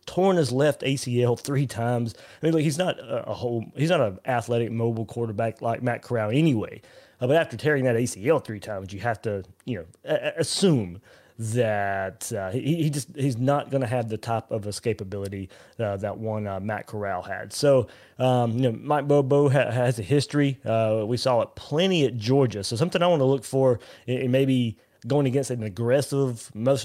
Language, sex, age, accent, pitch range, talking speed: English, male, 30-49, American, 110-140 Hz, 205 wpm